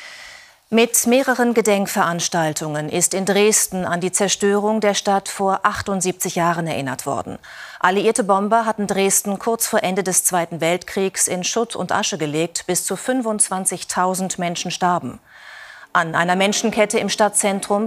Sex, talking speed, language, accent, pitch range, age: female, 140 wpm, German, German, 180-220 Hz, 40-59